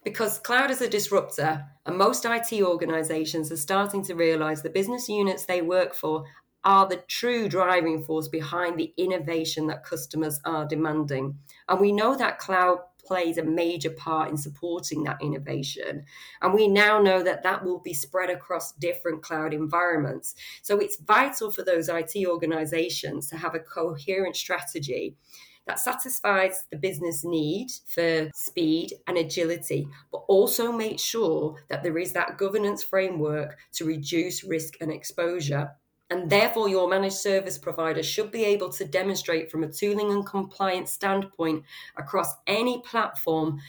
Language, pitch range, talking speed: English, 160-195 Hz, 155 wpm